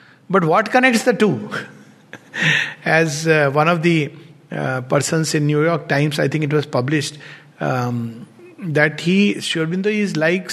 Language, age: English, 60-79